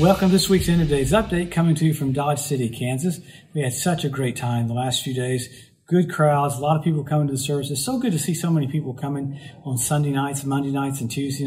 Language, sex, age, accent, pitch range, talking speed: English, male, 50-69, American, 130-160 Hz, 265 wpm